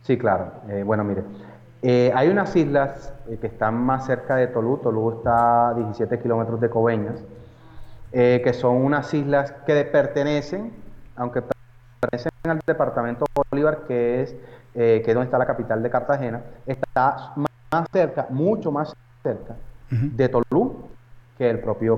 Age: 30-49